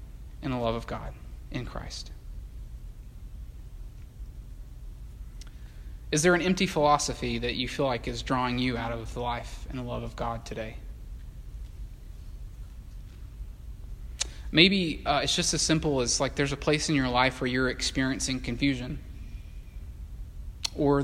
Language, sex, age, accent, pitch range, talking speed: English, male, 20-39, American, 115-145 Hz, 135 wpm